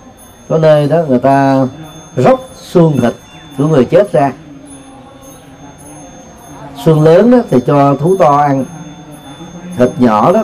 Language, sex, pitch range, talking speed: Vietnamese, male, 125-160 Hz, 130 wpm